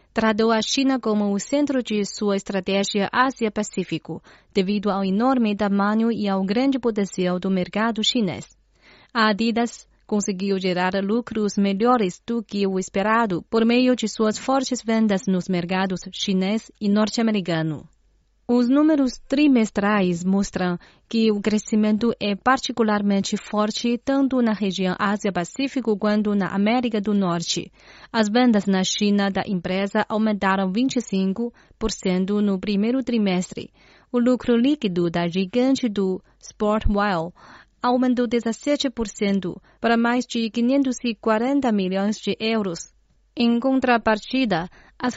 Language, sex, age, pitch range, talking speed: Portuguese, female, 30-49, 195-240 Hz, 120 wpm